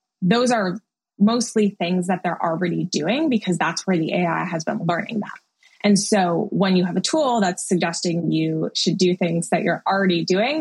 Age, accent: 20-39, American